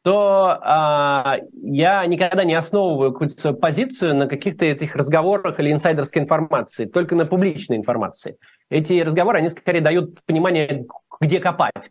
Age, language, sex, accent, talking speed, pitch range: 30-49, Russian, male, native, 135 wpm, 145-200 Hz